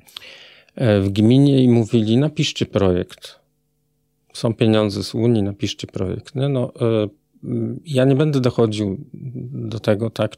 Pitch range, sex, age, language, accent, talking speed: 105-125 Hz, male, 40-59, Polish, native, 120 wpm